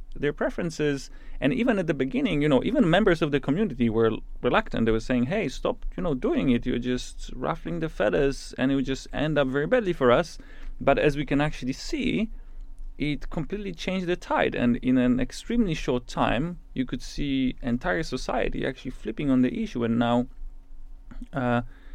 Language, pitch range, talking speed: English, 120-150 Hz, 190 wpm